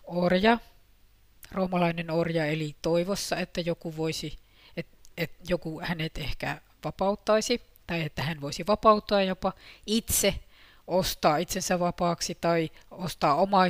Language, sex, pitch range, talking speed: Finnish, female, 140-180 Hz, 100 wpm